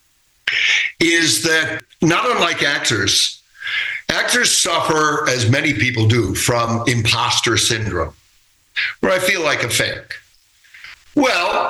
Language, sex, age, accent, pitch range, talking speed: English, male, 60-79, American, 110-135 Hz, 110 wpm